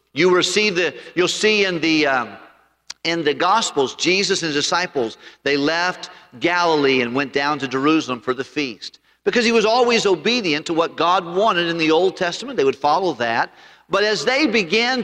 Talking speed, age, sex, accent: 185 wpm, 50-69, male, American